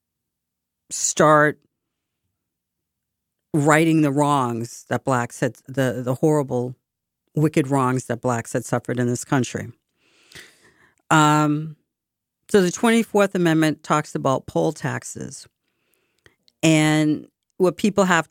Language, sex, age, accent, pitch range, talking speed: English, female, 50-69, American, 145-190 Hz, 110 wpm